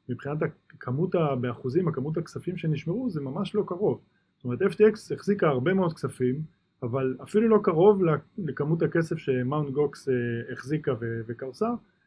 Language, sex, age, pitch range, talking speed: Hebrew, male, 20-39, 130-175 Hz, 135 wpm